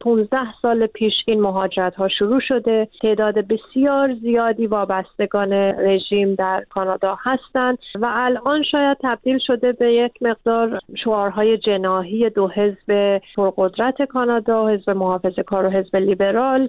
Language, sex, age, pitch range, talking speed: Persian, female, 30-49, 205-240 Hz, 120 wpm